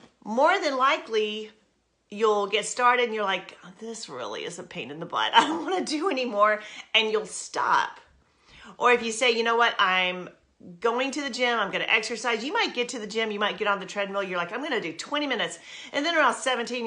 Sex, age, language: female, 40-59, English